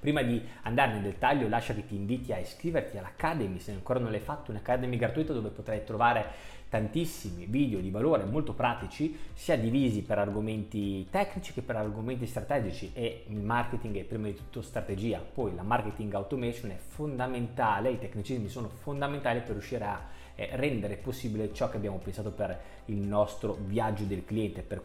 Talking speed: 170 wpm